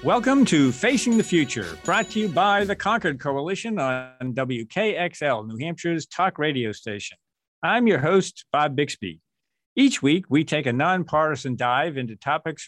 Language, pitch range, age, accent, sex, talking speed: English, 125-170 Hz, 50-69, American, male, 155 wpm